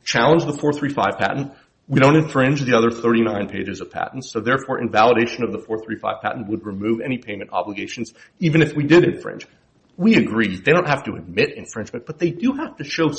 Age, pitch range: 40-59, 110-145 Hz